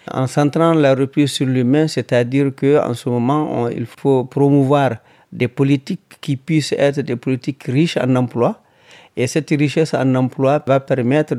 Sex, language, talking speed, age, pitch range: male, French, 165 wpm, 50-69, 120-145 Hz